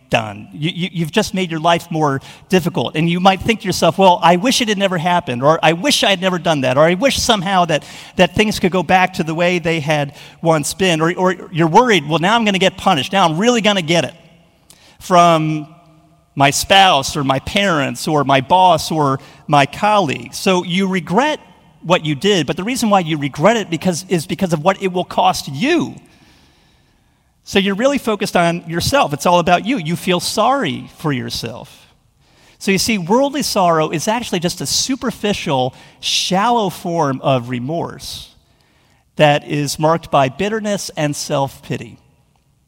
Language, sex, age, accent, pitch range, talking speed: English, male, 40-59, American, 150-195 Hz, 190 wpm